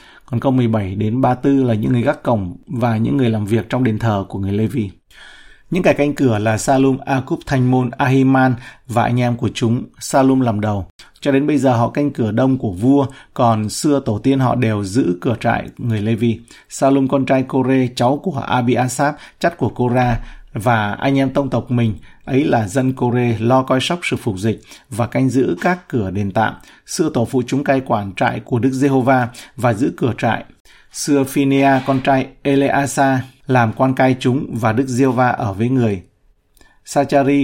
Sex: male